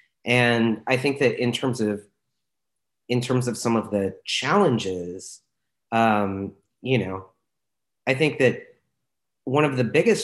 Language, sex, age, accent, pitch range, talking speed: English, male, 30-49, American, 105-125 Hz, 140 wpm